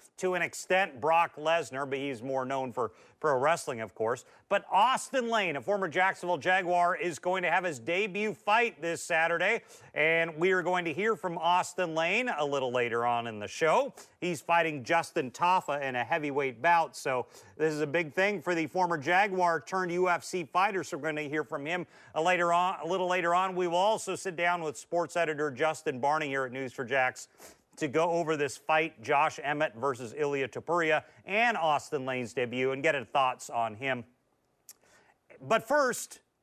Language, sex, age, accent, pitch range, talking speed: English, male, 40-59, American, 140-185 Hz, 190 wpm